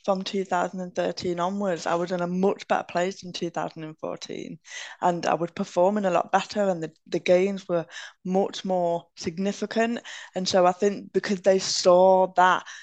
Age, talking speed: 10-29, 165 wpm